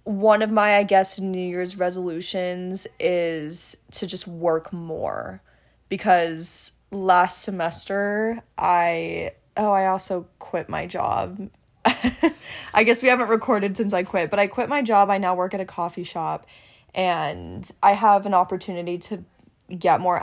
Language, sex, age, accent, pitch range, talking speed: English, female, 20-39, American, 175-210 Hz, 150 wpm